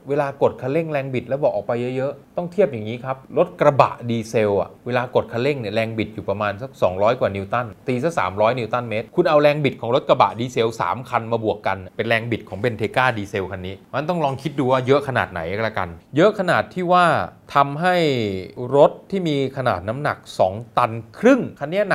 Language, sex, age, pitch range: Thai, male, 20-39, 110-145 Hz